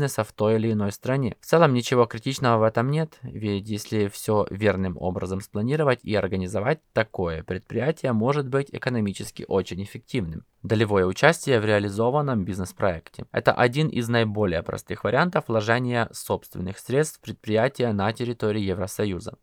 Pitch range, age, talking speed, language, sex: 100-130 Hz, 20-39, 140 wpm, Russian, male